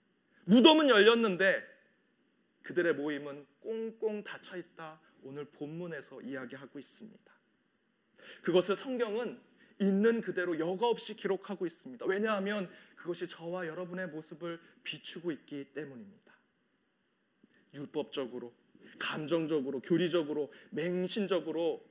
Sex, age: male, 30-49